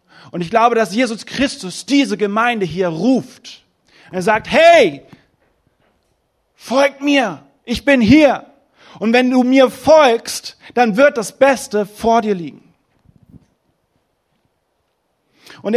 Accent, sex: German, male